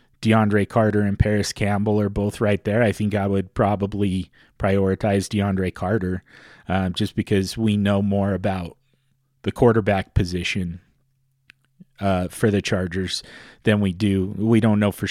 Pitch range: 95-115 Hz